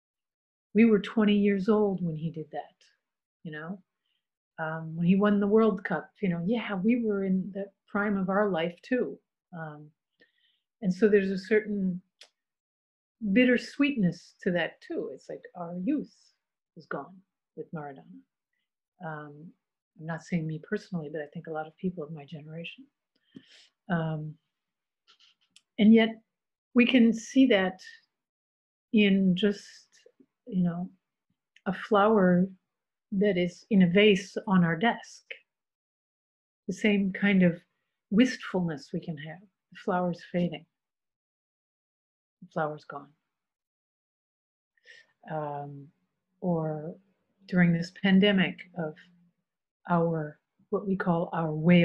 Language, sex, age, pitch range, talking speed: English, female, 50-69, 165-210 Hz, 125 wpm